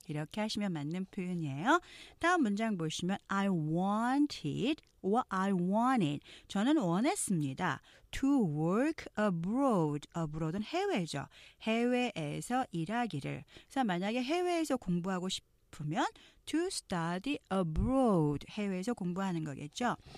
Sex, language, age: female, Korean, 40-59